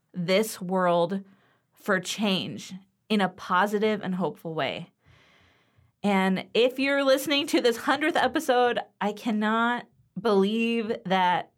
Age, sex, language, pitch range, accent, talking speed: 20-39, female, English, 180-220 Hz, American, 115 wpm